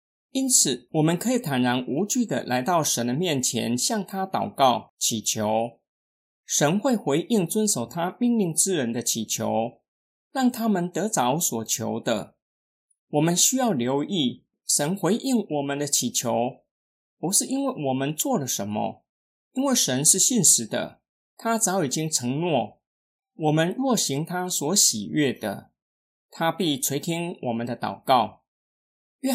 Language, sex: Chinese, male